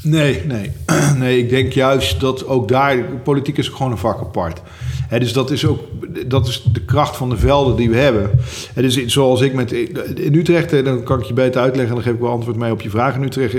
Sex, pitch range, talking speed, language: male, 100-125 Hz, 235 wpm, Dutch